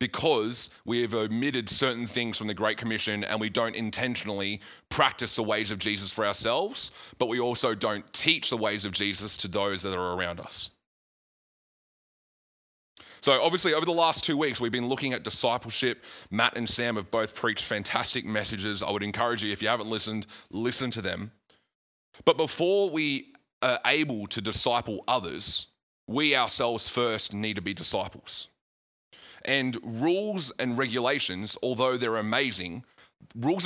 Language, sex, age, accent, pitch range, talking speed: English, male, 30-49, Australian, 105-130 Hz, 160 wpm